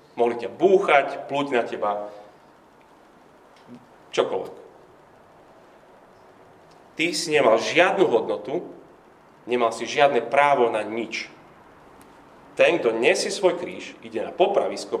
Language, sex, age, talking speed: Slovak, male, 40-59, 105 wpm